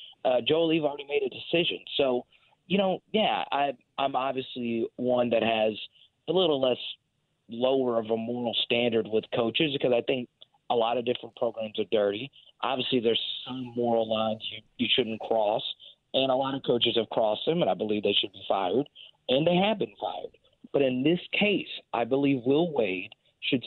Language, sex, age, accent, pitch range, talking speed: English, male, 40-59, American, 115-145 Hz, 190 wpm